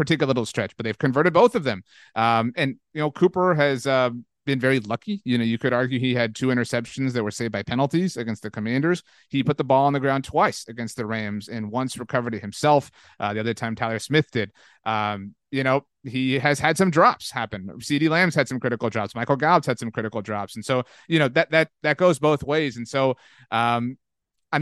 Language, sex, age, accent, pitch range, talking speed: English, male, 30-49, American, 115-140 Hz, 230 wpm